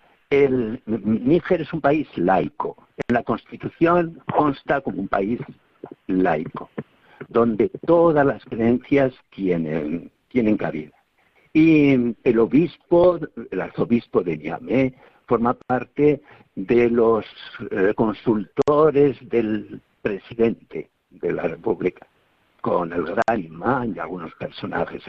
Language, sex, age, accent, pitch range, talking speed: Spanish, male, 60-79, Spanish, 120-155 Hz, 110 wpm